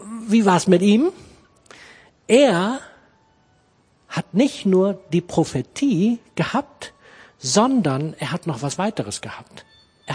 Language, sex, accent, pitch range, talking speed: German, male, German, 145-195 Hz, 120 wpm